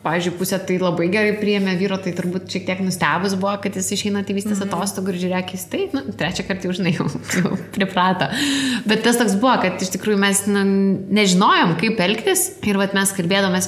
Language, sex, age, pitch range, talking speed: English, female, 20-39, 180-205 Hz, 185 wpm